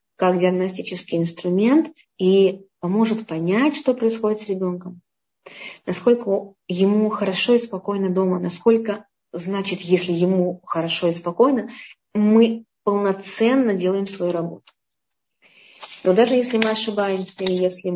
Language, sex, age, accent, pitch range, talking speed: Russian, female, 20-39, native, 185-225 Hz, 115 wpm